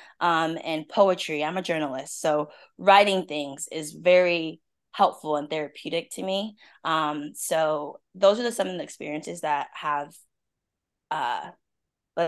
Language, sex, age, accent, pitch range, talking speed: English, female, 20-39, American, 150-180 Hz, 135 wpm